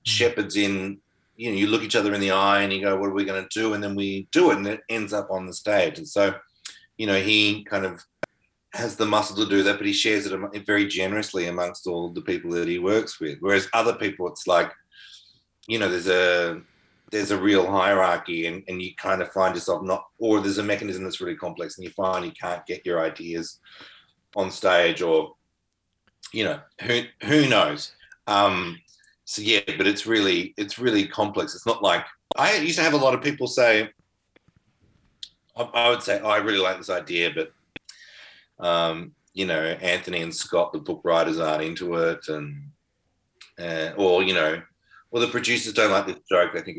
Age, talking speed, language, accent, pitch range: 30-49, 210 wpm, English, Australian, 90-115 Hz